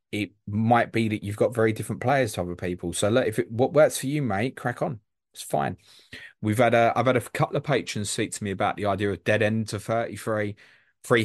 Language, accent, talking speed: English, British, 250 wpm